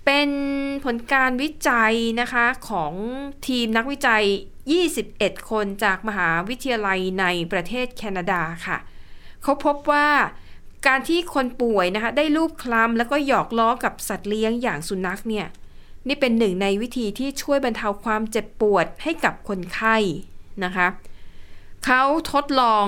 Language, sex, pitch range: Thai, female, 200-270 Hz